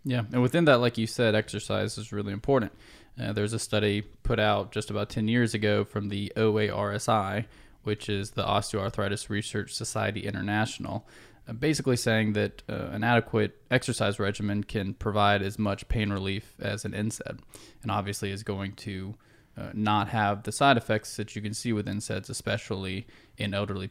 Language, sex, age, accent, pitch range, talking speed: English, male, 20-39, American, 105-115 Hz, 175 wpm